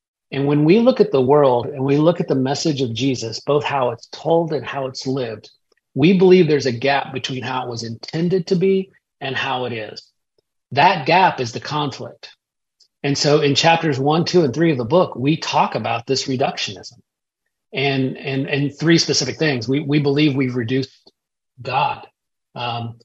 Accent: American